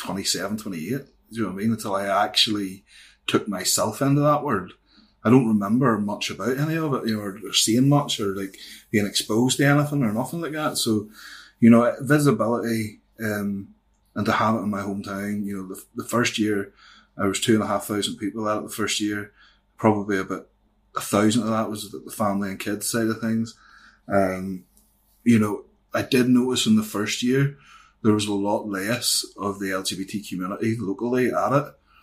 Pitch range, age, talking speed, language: 100-115 Hz, 20-39, 200 wpm, English